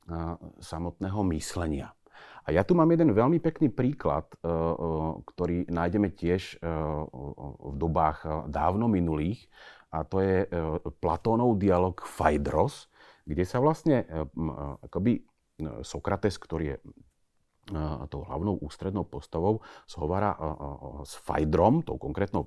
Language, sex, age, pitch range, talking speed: Slovak, male, 40-59, 80-115 Hz, 105 wpm